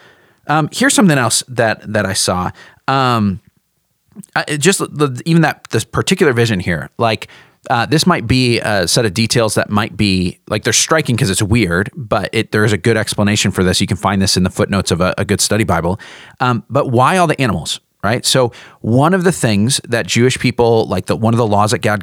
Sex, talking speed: male, 220 wpm